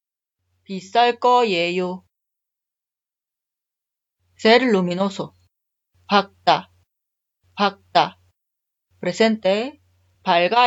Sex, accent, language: female, native, Korean